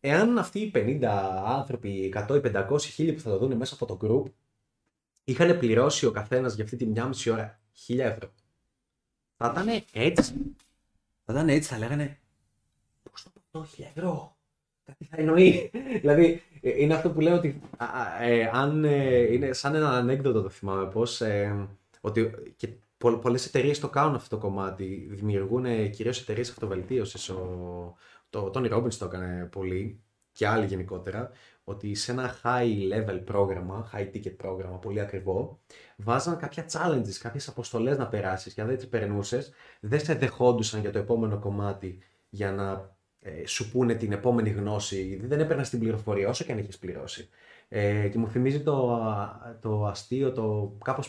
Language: Greek